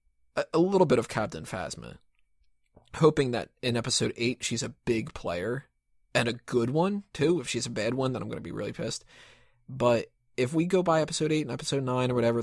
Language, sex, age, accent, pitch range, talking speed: English, male, 20-39, American, 110-130 Hz, 210 wpm